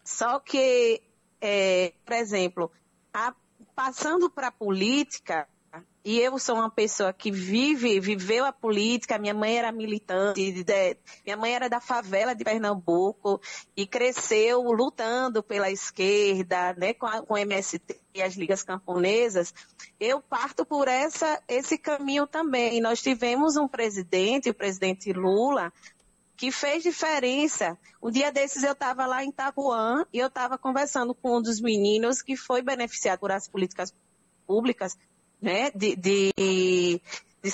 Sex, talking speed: female, 145 wpm